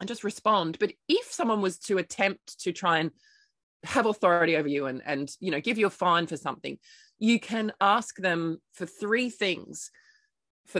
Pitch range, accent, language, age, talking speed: 165-215 Hz, Australian, English, 20-39, 190 wpm